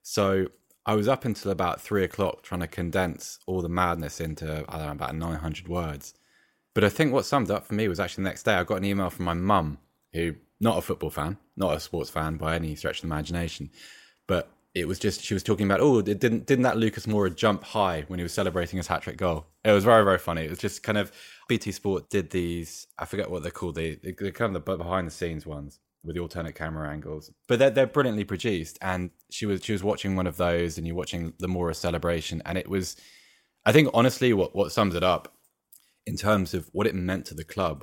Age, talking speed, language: 20-39, 240 wpm, English